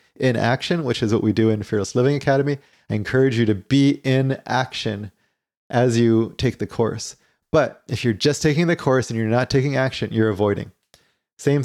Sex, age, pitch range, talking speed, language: male, 20-39, 110-135 Hz, 195 wpm, English